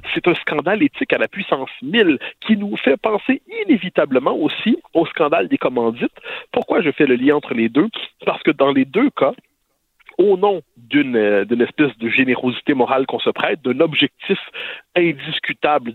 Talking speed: 175 wpm